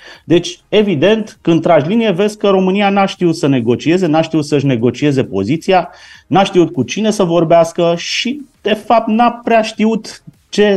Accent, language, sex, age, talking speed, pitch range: native, Romanian, male, 30-49, 165 wpm, 125-185 Hz